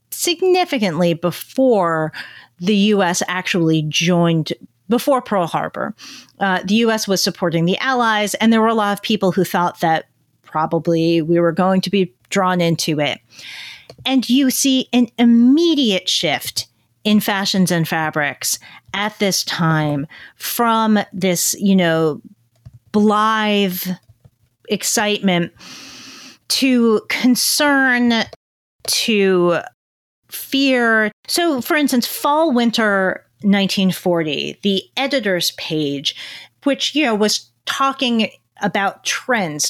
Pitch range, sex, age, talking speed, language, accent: 170-245 Hz, female, 40-59, 110 wpm, English, American